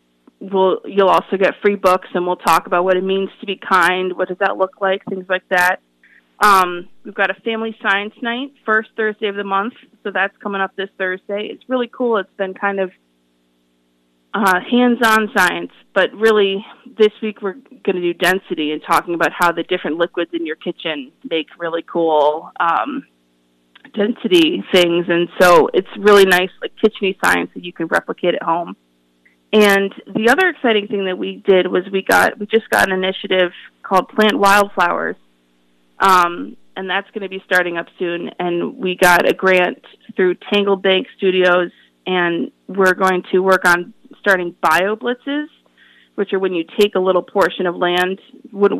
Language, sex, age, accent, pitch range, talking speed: English, female, 20-39, American, 175-205 Hz, 180 wpm